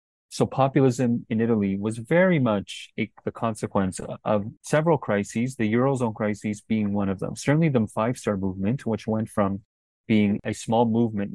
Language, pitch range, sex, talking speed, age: English, 100-115 Hz, male, 170 wpm, 30-49